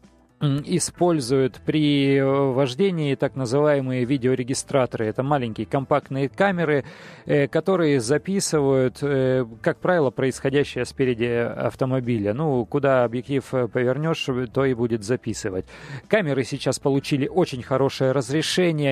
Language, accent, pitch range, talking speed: Russian, native, 125-150 Hz, 100 wpm